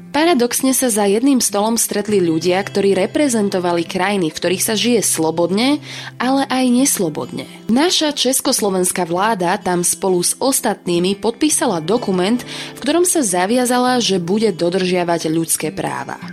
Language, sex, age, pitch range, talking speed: Slovak, female, 20-39, 180-255 Hz, 130 wpm